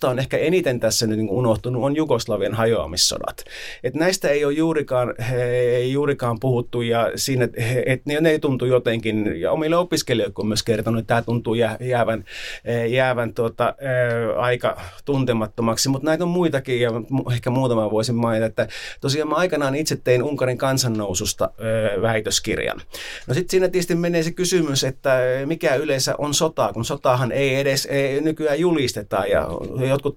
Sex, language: male, Finnish